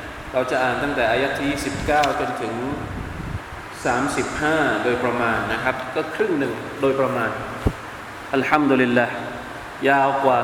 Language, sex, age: Thai, male, 20-39